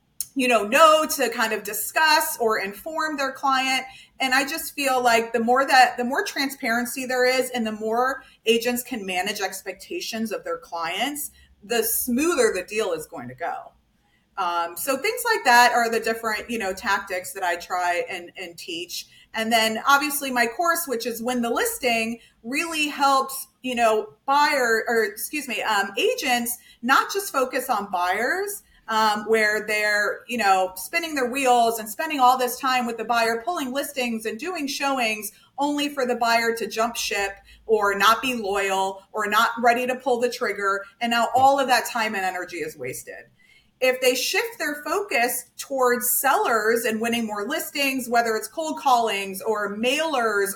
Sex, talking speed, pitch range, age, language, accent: female, 180 wpm, 220-270 Hz, 30-49, English, American